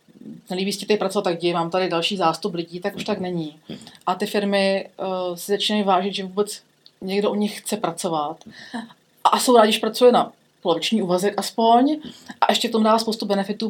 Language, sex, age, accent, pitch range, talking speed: Czech, female, 30-49, native, 180-215 Hz, 190 wpm